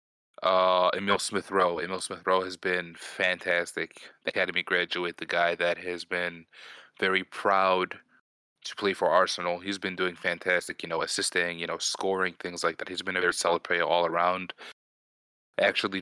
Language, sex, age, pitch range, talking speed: English, male, 20-39, 90-100 Hz, 160 wpm